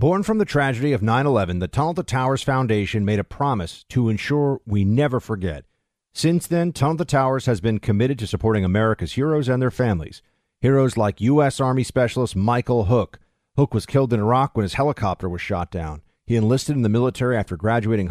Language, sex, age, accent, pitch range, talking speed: English, male, 50-69, American, 100-130 Hz, 190 wpm